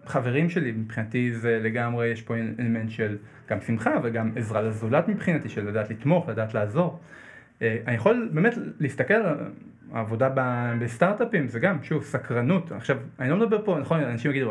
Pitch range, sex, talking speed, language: 120-170 Hz, male, 160 wpm, Hebrew